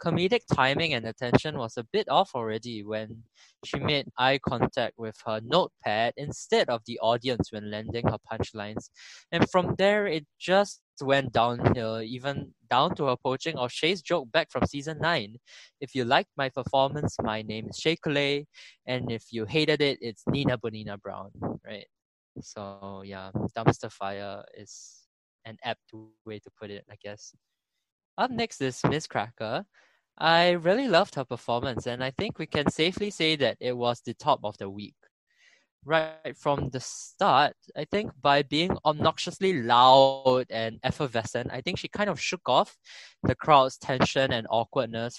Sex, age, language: male, 20-39, English